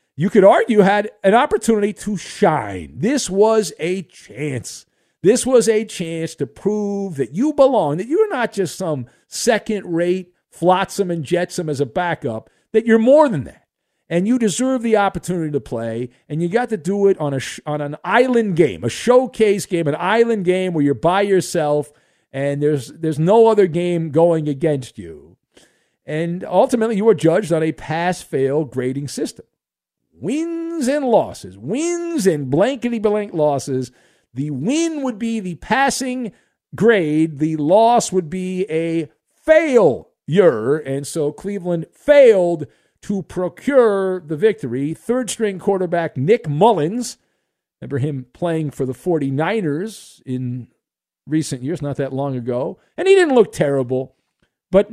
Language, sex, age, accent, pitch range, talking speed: English, male, 50-69, American, 150-220 Hz, 150 wpm